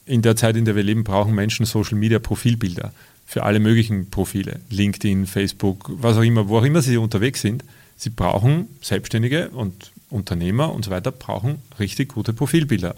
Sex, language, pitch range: male, German, 100-125 Hz